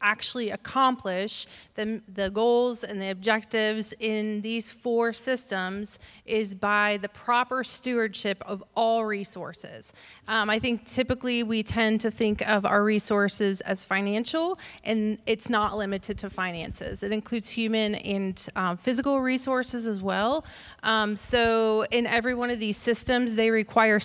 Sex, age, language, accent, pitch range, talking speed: female, 30-49, English, American, 205-235 Hz, 145 wpm